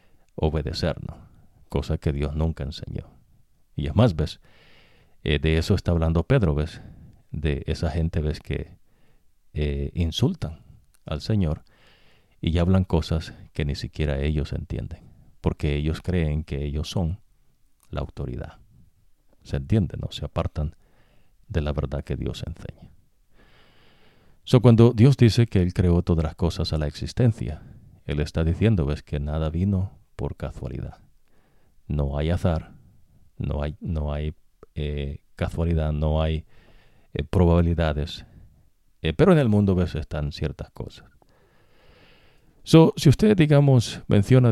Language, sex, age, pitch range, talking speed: English, male, 50-69, 75-95 Hz, 135 wpm